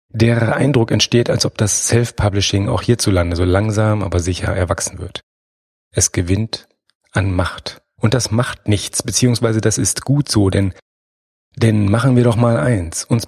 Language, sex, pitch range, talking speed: German, male, 100-120 Hz, 165 wpm